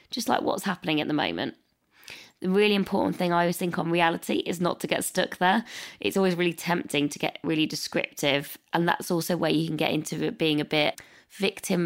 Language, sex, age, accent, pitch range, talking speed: English, female, 20-39, British, 160-180 Hz, 215 wpm